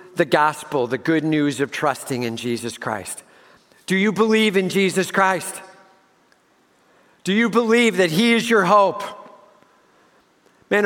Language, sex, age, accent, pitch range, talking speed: English, male, 50-69, American, 135-195 Hz, 140 wpm